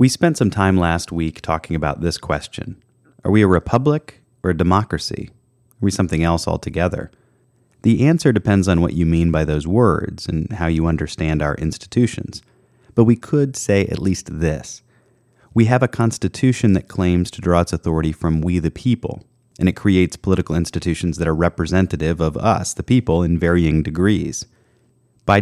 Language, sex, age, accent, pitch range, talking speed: English, male, 30-49, American, 85-115 Hz, 175 wpm